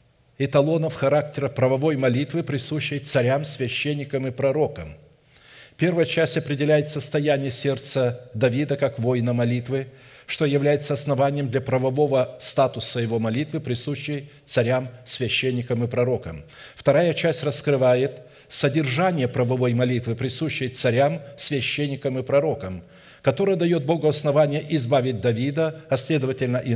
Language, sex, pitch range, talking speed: Russian, male, 125-150 Hz, 115 wpm